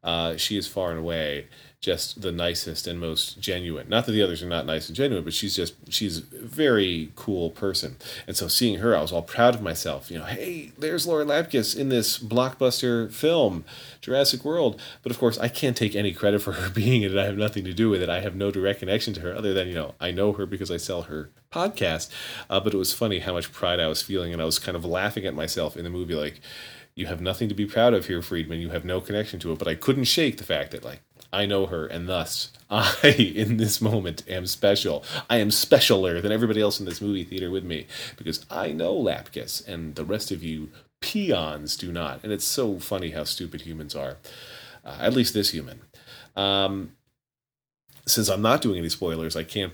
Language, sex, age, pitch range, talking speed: English, male, 30-49, 85-110 Hz, 230 wpm